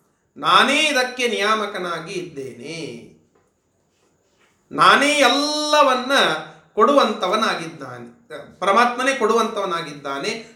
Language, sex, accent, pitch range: Kannada, male, native, 185-250 Hz